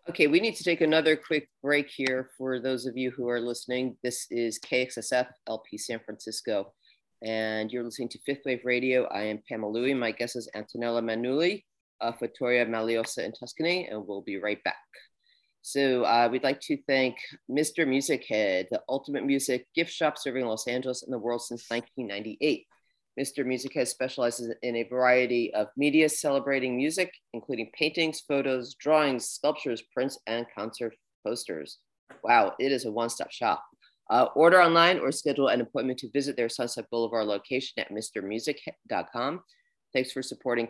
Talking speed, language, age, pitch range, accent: 170 wpm, English, 40-59, 115-140 Hz, American